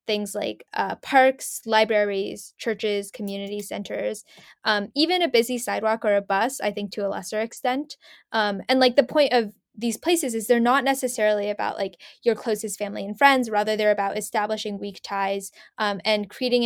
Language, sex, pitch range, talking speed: English, female, 200-235 Hz, 180 wpm